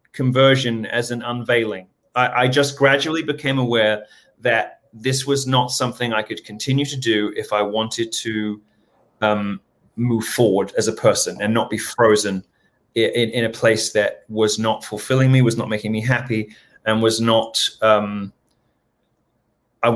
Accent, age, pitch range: British, 30-49, 110-130 Hz